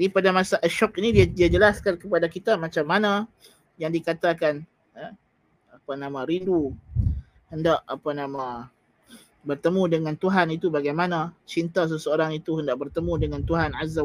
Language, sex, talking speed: Malay, male, 145 wpm